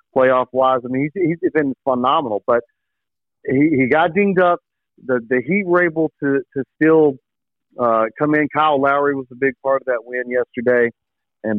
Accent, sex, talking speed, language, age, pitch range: American, male, 180 wpm, English, 40-59, 115-145 Hz